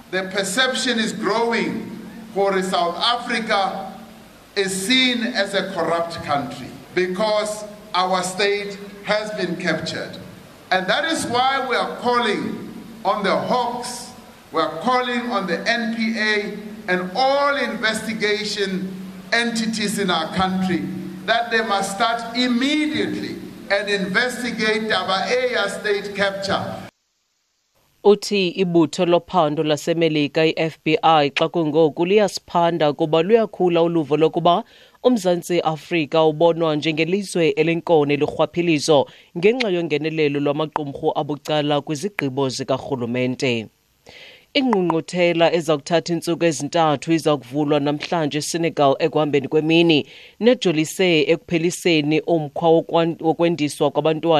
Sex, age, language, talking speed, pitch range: male, 50-69, English, 115 wpm, 155-210 Hz